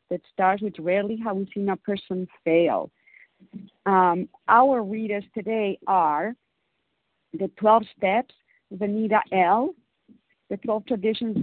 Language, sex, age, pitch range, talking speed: English, female, 50-69, 190-240 Hz, 120 wpm